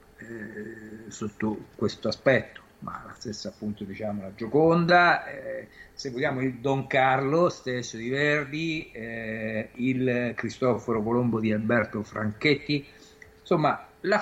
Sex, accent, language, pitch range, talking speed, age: male, native, Italian, 110-130 Hz, 120 wpm, 50-69